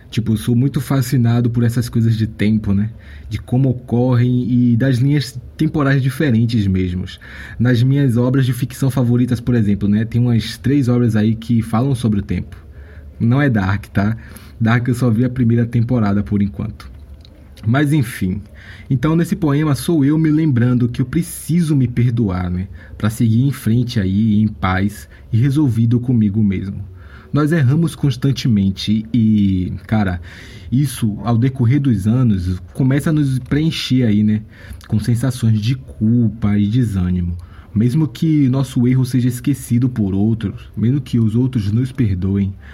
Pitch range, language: 100-125 Hz, Portuguese